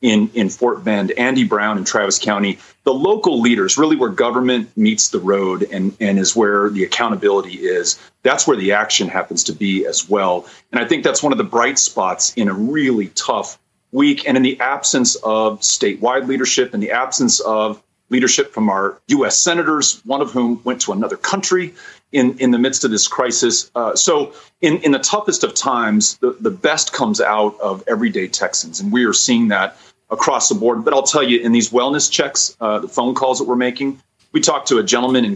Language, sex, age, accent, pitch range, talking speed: English, male, 40-59, American, 115-155 Hz, 210 wpm